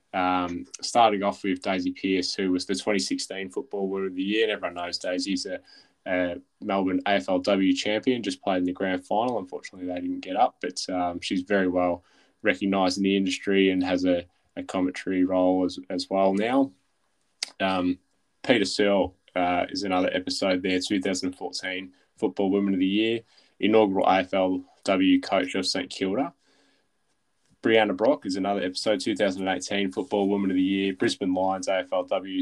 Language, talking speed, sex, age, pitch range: English, 165 wpm, male, 10-29, 90-100 Hz